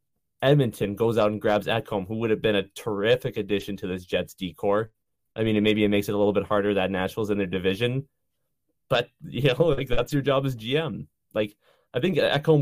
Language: English